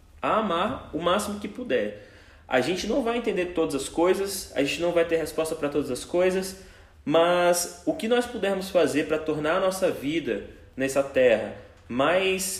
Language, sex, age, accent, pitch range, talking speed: Portuguese, male, 20-39, Brazilian, 150-215 Hz, 180 wpm